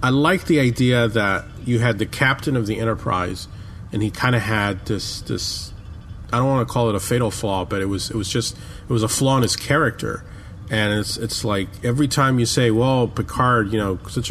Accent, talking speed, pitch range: American, 225 wpm, 95-120 Hz